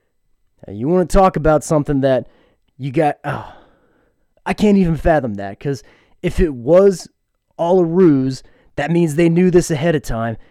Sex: male